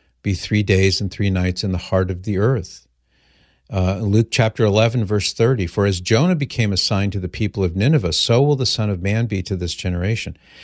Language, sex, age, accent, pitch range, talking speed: English, male, 50-69, American, 95-115 Hz, 220 wpm